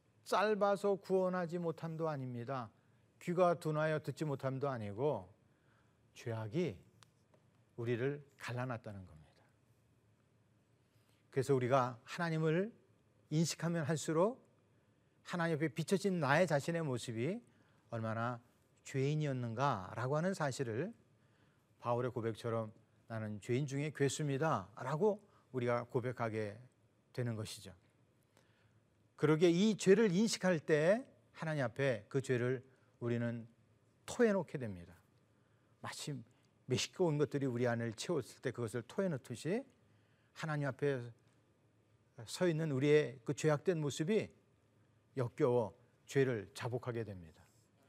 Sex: male